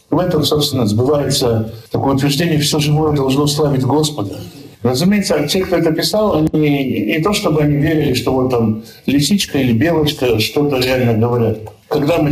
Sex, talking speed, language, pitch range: male, 160 wpm, Russian, 120-155 Hz